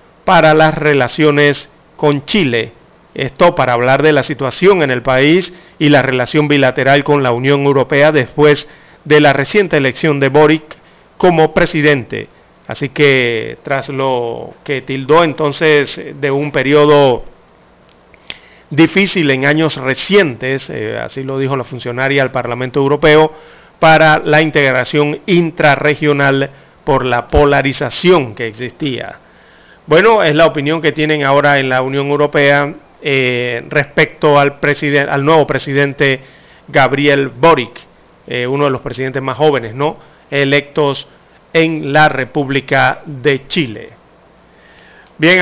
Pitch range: 135-155 Hz